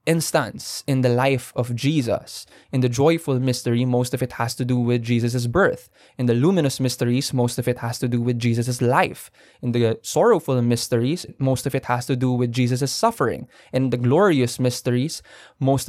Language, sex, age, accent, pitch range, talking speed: English, male, 20-39, Filipino, 125-155 Hz, 190 wpm